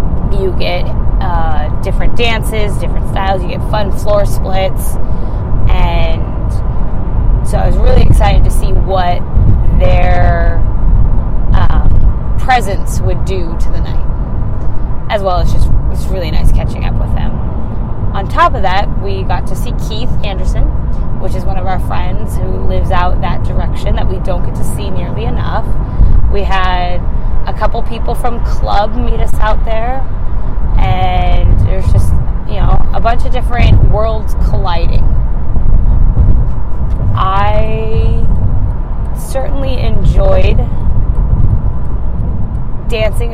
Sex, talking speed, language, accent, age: female, 130 wpm, English, American, 20-39